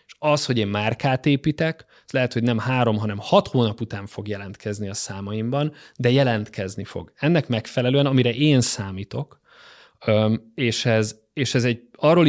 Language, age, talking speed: Hungarian, 20-39, 145 wpm